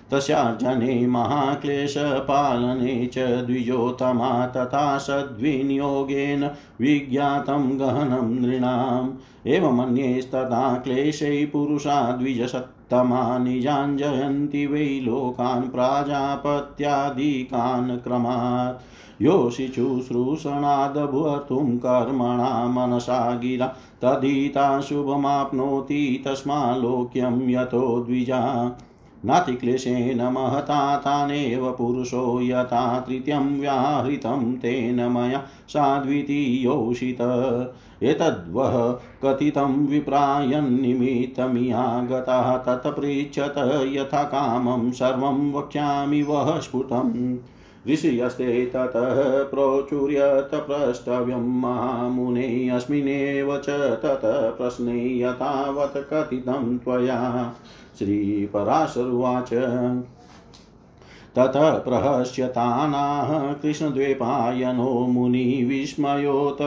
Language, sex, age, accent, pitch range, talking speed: Hindi, male, 50-69, native, 125-140 Hz, 50 wpm